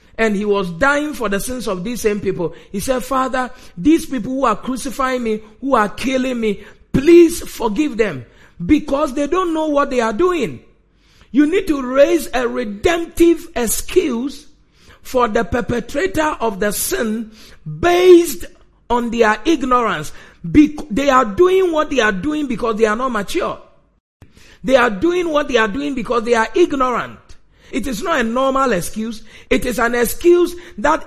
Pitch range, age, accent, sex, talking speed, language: 215-290 Hz, 50-69, Nigerian, male, 165 wpm, English